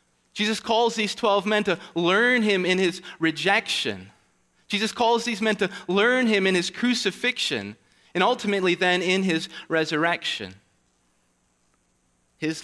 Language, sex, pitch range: English, male, 135-180 Hz